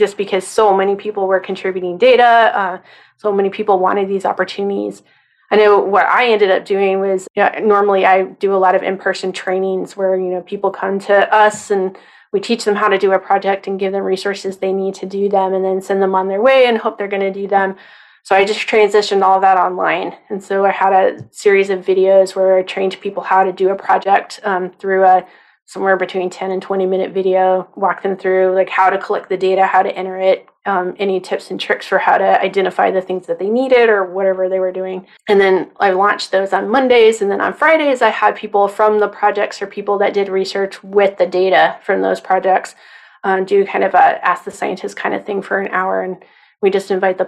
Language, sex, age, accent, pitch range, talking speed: English, female, 20-39, American, 190-200 Hz, 230 wpm